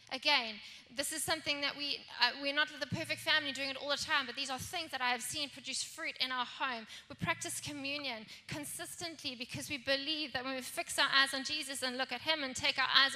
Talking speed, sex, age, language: 245 wpm, female, 20-39, English